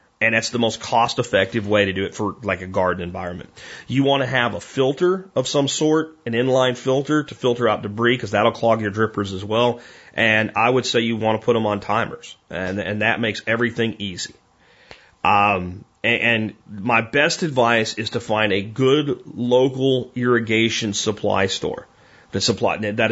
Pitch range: 105-125 Hz